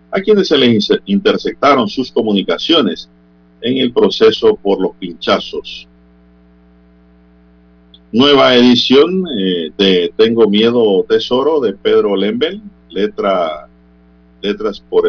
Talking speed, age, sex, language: 105 wpm, 50-69, male, Spanish